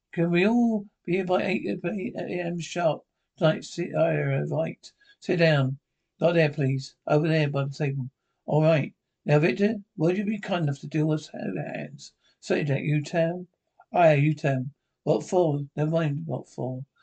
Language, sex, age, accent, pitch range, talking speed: English, male, 60-79, British, 145-175 Hz, 175 wpm